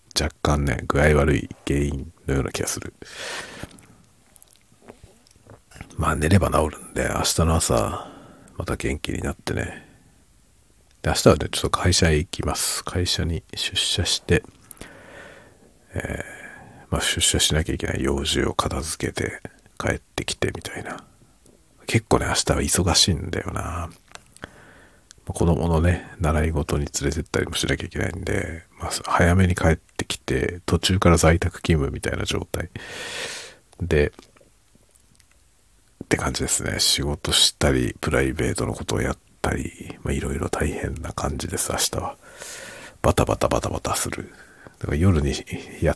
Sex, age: male, 50-69